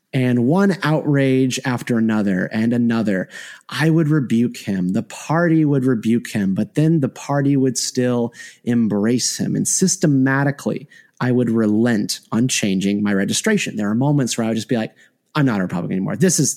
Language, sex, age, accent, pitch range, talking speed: English, male, 30-49, American, 110-145 Hz, 180 wpm